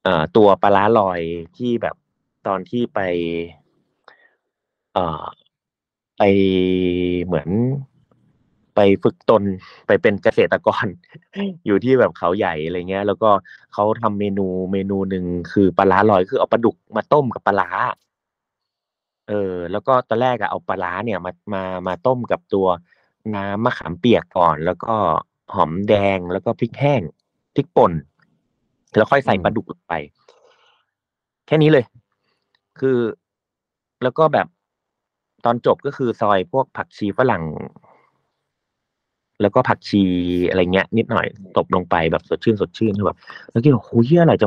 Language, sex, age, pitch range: Thai, male, 30-49, 95-120 Hz